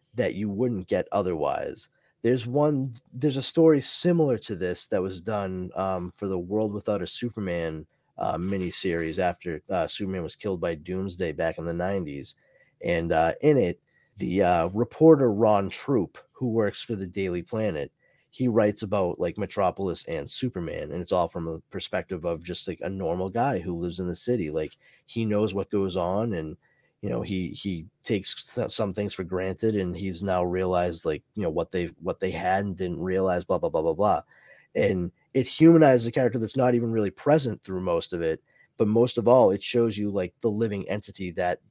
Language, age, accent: English, 20-39, American